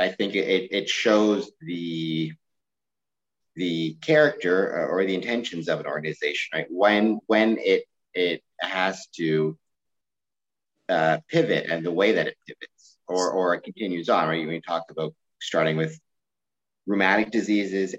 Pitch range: 80-105 Hz